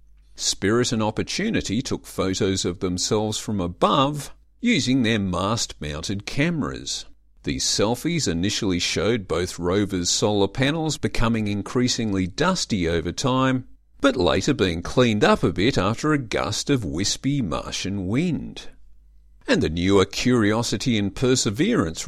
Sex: male